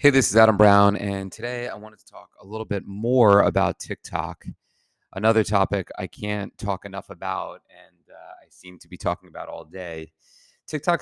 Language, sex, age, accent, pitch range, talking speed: English, male, 30-49, American, 95-110 Hz, 190 wpm